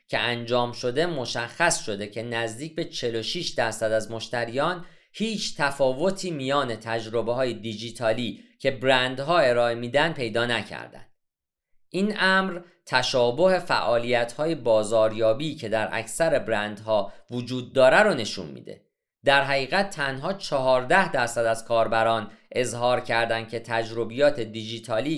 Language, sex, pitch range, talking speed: Persian, male, 115-160 Hz, 120 wpm